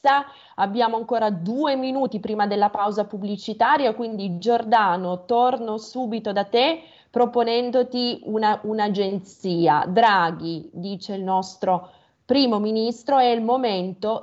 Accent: native